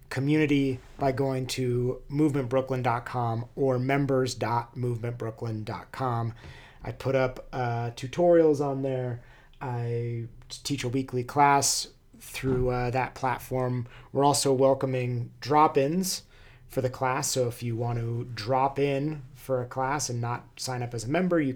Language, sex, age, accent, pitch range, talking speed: English, male, 30-49, American, 120-135 Hz, 135 wpm